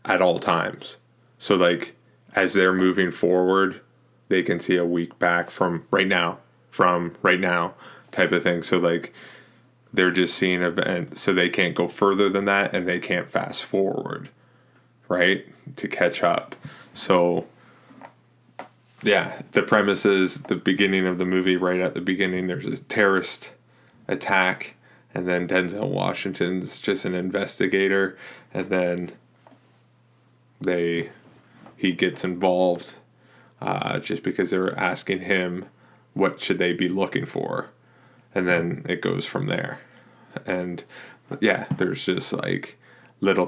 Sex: male